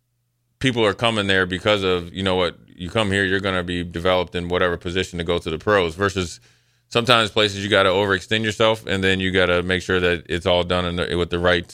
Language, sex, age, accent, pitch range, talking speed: English, male, 30-49, American, 95-115 Hz, 250 wpm